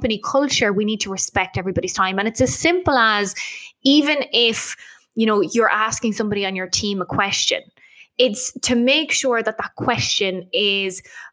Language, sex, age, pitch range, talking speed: English, female, 20-39, 195-255 Hz, 170 wpm